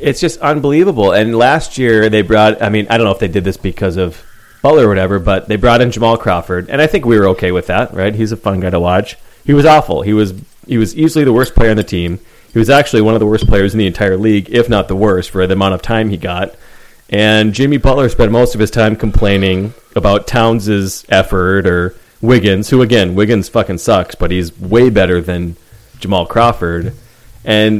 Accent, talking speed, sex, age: American, 230 wpm, male, 30-49